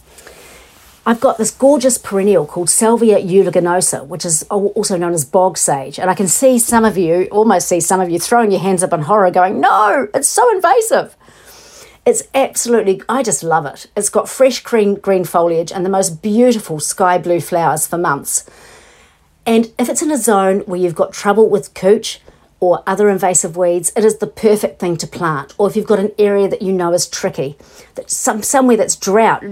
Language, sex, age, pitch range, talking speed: English, female, 40-59, 175-220 Hz, 200 wpm